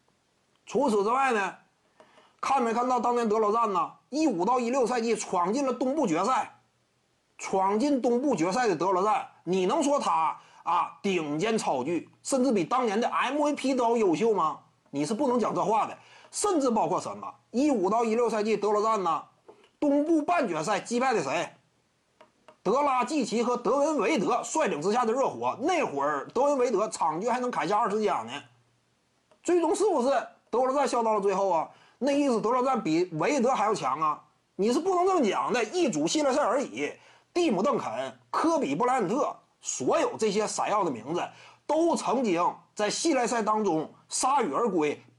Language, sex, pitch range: Chinese, male, 220-290 Hz